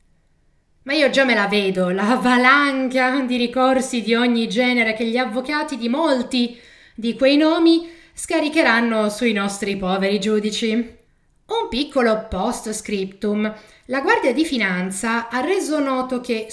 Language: Italian